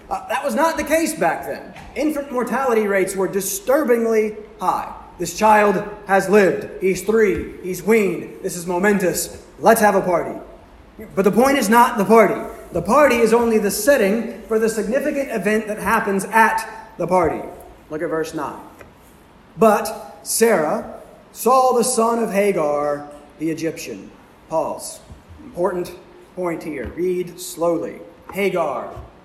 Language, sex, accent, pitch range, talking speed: English, male, American, 175-220 Hz, 145 wpm